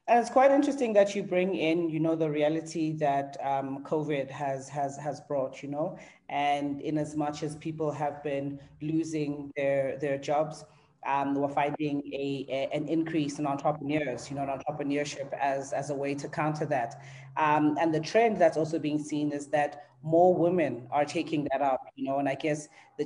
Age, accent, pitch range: 30-49, South African, 140-165 Hz